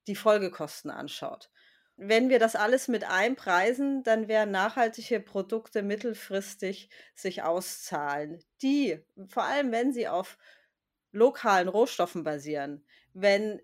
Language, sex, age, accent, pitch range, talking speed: German, female, 40-59, German, 195-255 Hz, 115 wpm